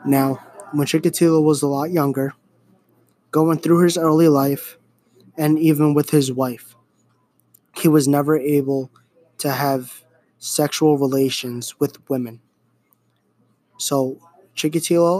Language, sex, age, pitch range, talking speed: English, male, 20-39, 135-155 Hz, 115 wpm